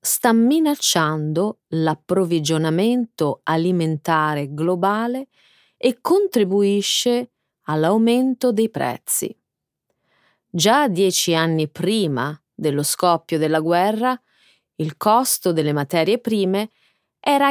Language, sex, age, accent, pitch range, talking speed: Italian, female, 30-49, native, 155-230 Hz, 80 wpm